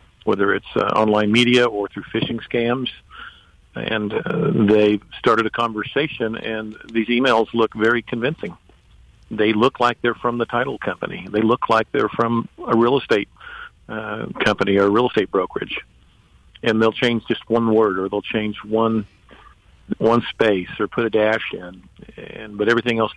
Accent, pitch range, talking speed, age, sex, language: American, 105-115 Hz, 170 wpm, 50-69, male, English